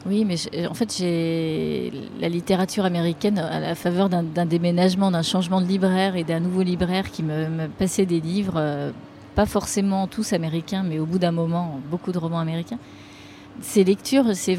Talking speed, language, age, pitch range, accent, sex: 185 wpm, French, 30-49, 165-195 Hz, French, female